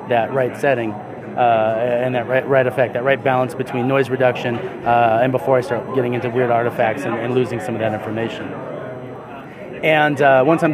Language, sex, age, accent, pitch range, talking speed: English, male, 30-49, American, 125-155 Hz, 195 wpm